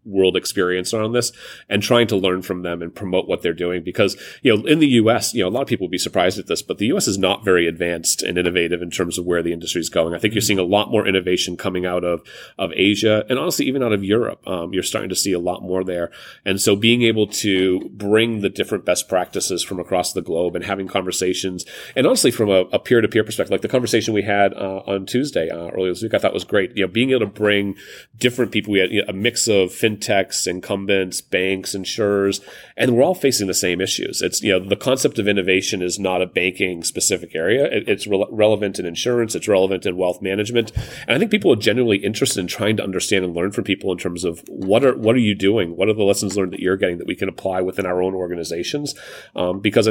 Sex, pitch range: male, 90-110 Hz